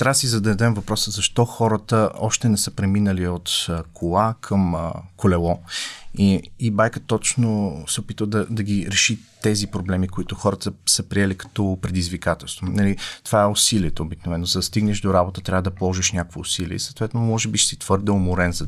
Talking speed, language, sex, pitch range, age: 175 wpm, Bulgarian, male, 90-110 Hz, 30-49